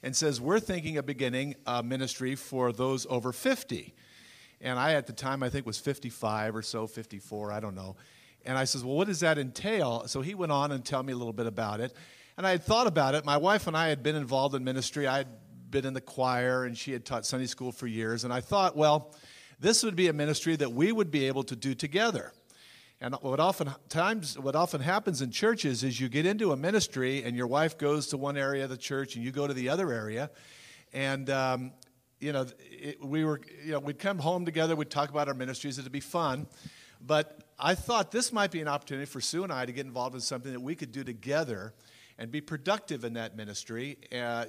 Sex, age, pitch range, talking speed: male, 50-69, 125-155 Hz, 235 wpm